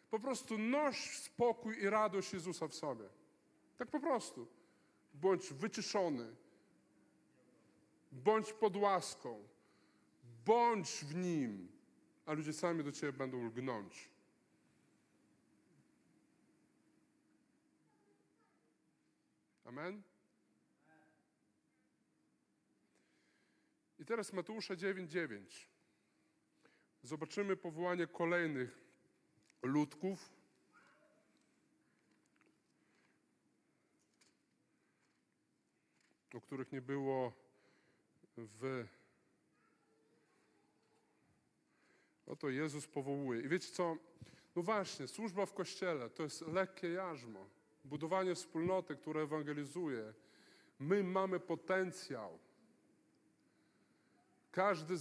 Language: Polish